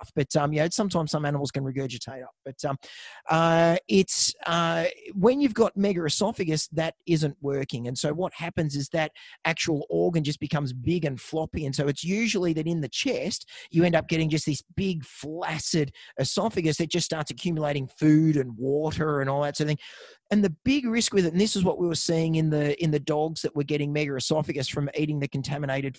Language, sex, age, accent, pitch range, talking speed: English, male, 30-49, Australian, 140-175 Hz, 210 wpm